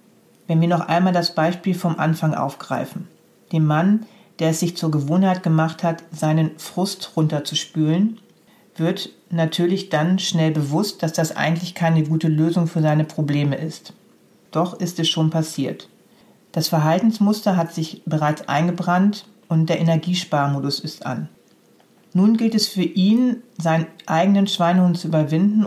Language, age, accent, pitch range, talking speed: German, 40-59, German, 160-190 Hz, 145 wpm